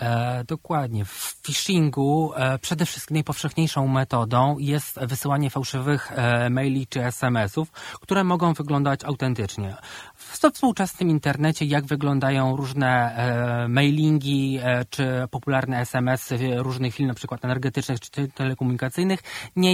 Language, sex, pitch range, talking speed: Polish, male, 125-150 Hz, 120 wpm